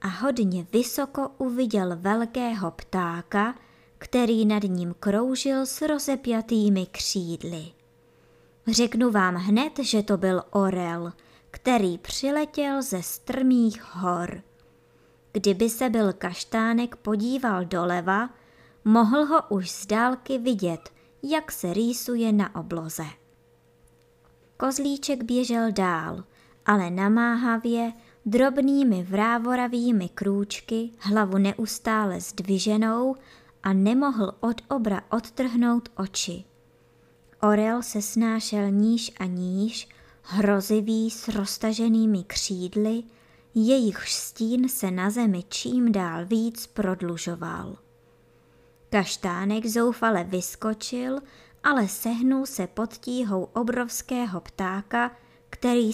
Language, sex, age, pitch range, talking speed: Czech, male, 20-39, 190-240 Hz, 95 wpm